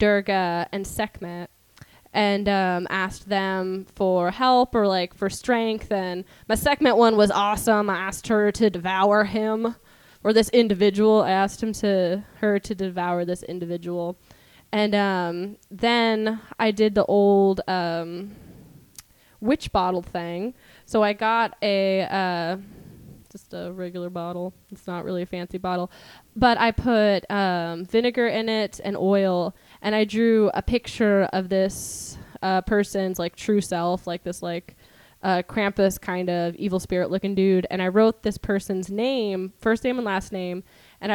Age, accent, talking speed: 10-29, American, 155 wpm